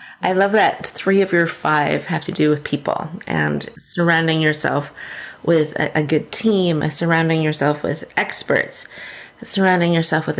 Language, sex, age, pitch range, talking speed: English, female, 30-49, 165-195 Hz, 150 wpm